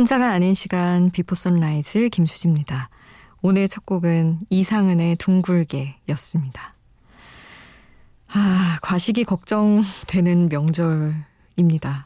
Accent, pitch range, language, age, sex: native, 160-200 Hz, Korean, 20-39, female